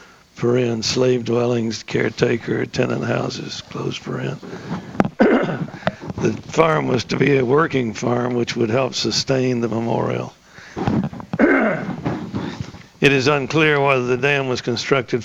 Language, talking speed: English, 105 wpm